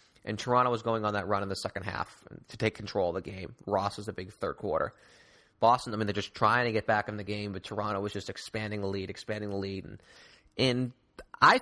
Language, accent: English, American